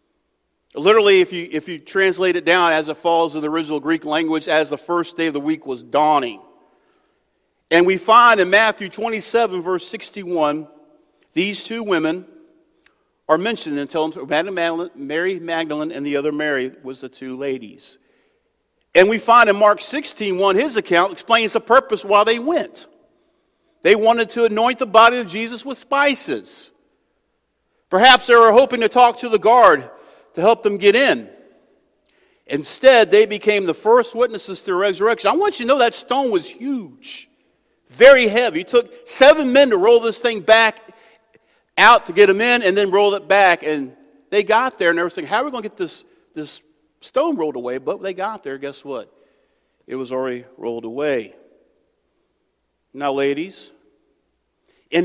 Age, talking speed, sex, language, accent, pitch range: 50-69, 180 wpm, male, English, American, 165-275 Hz